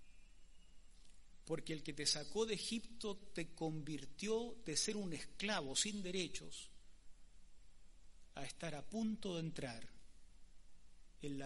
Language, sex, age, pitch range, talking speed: Spanish, male, 40-59, 130-180 Hz, 120 wpm